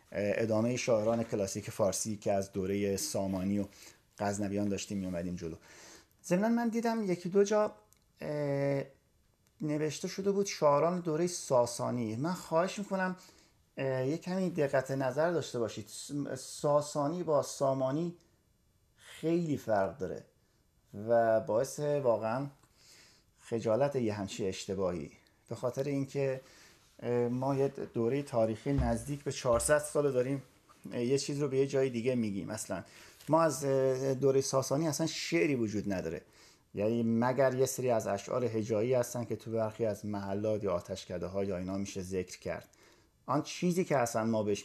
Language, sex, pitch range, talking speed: Persian, male, 105-140 Hz, 140 wpm